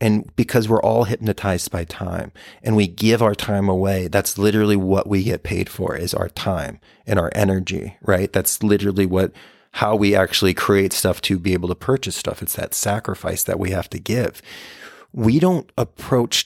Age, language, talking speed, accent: 30-49, English, 190 wpm, American